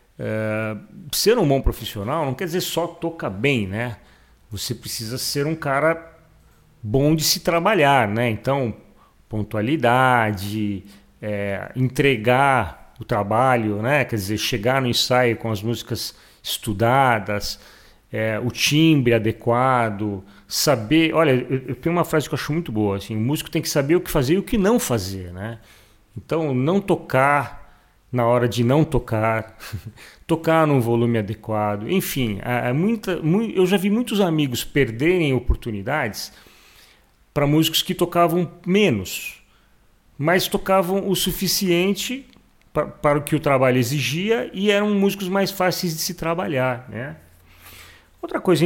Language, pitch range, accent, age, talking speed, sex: Portuguese, 110-165 Hz, Brazilian, 40-59, 135 wpm, male